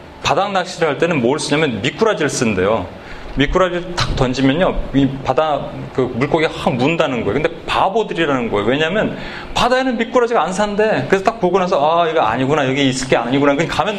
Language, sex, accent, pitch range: Korean, male, native, 160-210 Hz